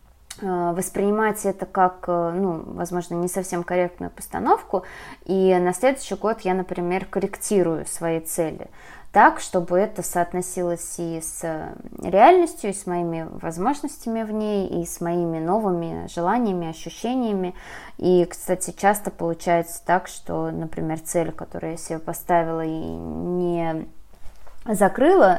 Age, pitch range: 20-39, 170-195 Hz